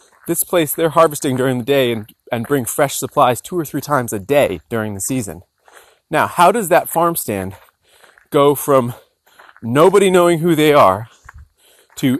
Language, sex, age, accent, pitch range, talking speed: English, male, 30-49, American, 120-160 Hz, 170 wpm